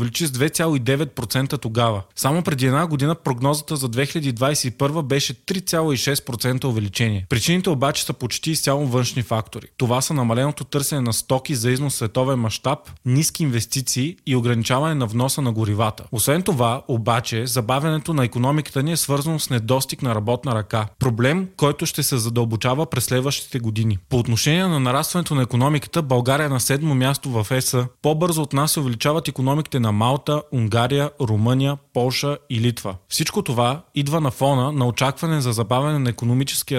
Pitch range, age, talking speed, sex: 120-145 Hz, 20-39, 160 wpm, male